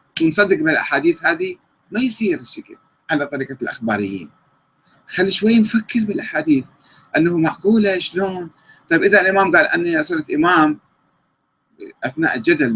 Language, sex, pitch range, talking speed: Arabic, male, 130-210 Hz, 120 wpm